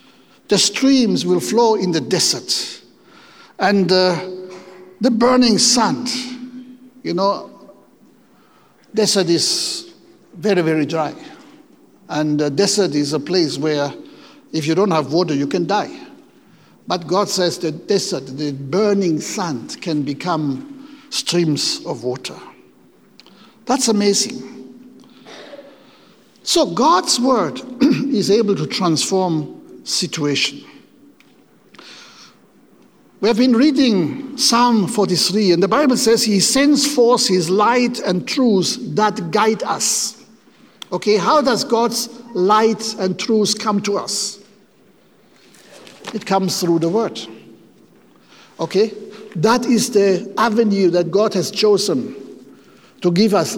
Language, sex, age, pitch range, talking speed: English, male, 60-79, 180-240 Hz, 120 wpm